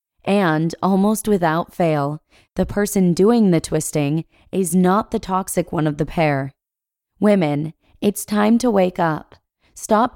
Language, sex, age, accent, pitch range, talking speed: English, female, 20-39, American, 160-200 Hz, 140 wpm